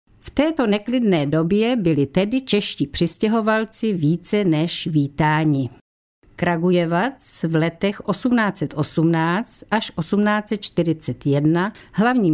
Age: 50-69